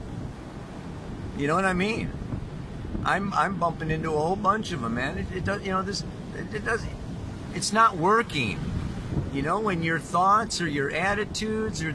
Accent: American